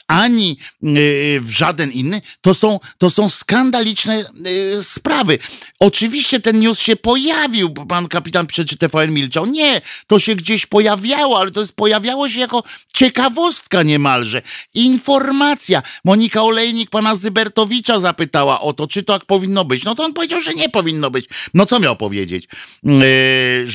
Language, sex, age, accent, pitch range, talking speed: Polish, male, 50-69, native, 145-210 Hz, 155 wpm